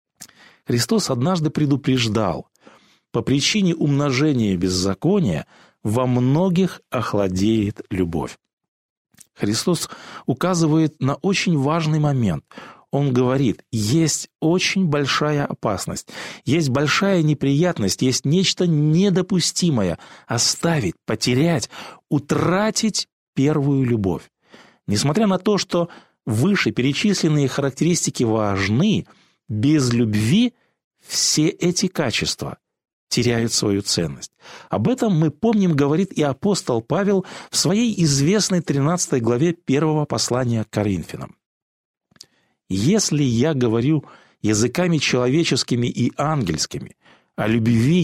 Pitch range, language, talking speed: 120-175 Hz, Russian, 95 wpm